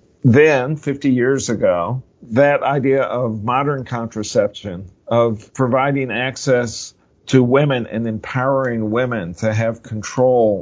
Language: English